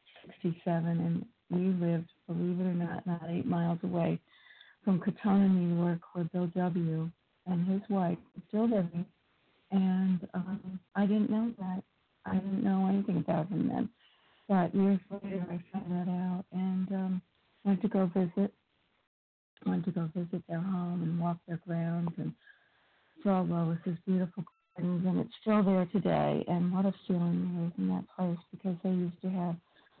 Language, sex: English, female